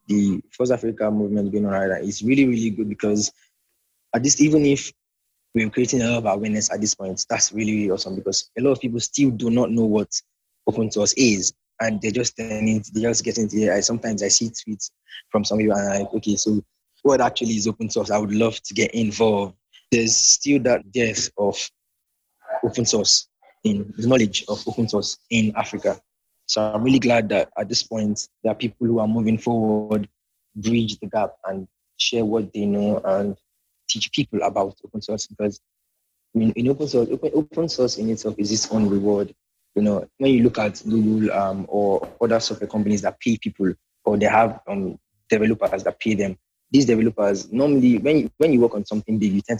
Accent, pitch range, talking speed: Jamaican, 105-120 Hz, 205 wpm